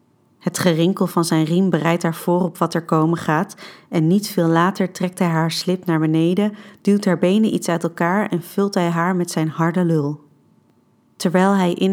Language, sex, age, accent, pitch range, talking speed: Dutch, female, 30-49, Dutch, 165-185 Hz, 200 wpm